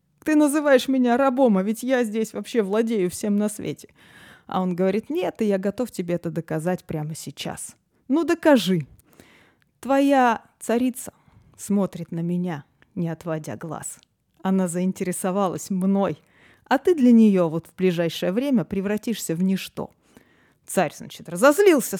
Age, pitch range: 20-39, 175-245 Hz